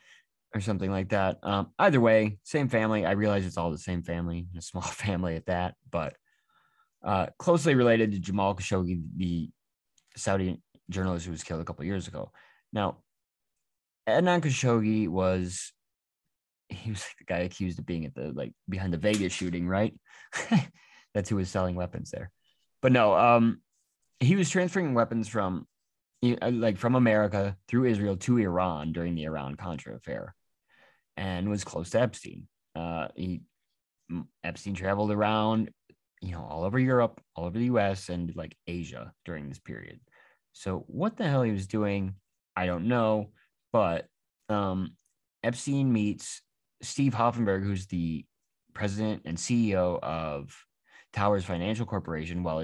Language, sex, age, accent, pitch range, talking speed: English, male, 20-39, American, 90-115 Hz, 155 wpm